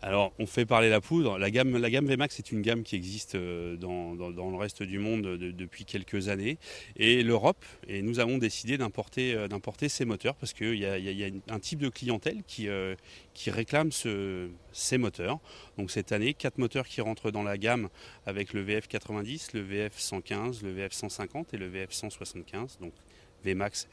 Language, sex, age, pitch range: French, male, 30-49, 100-120 Hz